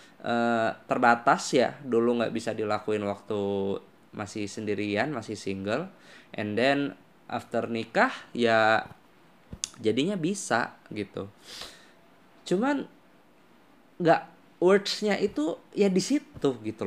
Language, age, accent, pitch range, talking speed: Indonesian, 20-39, native, 110-165 Hz, 95 wpm